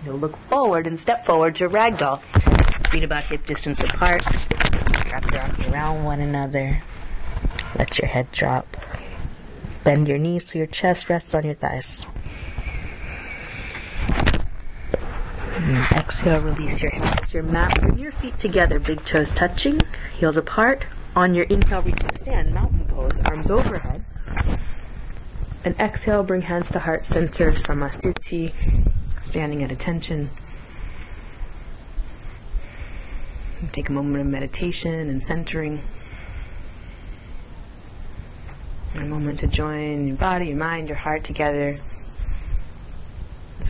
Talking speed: 120 wpm